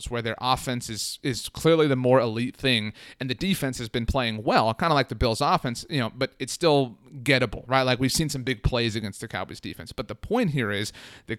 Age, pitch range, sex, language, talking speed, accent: 30-49, 110-130 Hz, male, English, 240 wpm, American